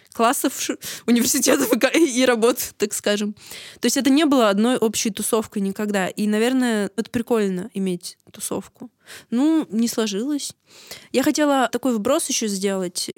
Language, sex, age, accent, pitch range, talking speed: Russian, female, 20-39, native, 205-250 Hz, 145 wpm